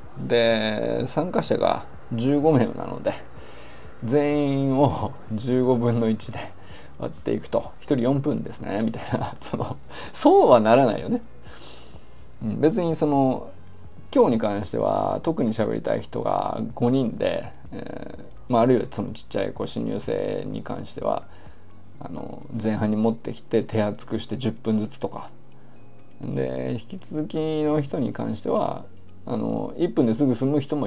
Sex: male